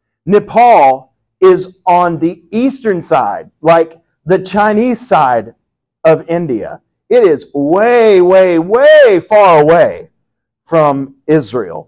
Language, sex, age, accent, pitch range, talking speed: English, male, 40-59, American, 150-200 Hz, 105 wpm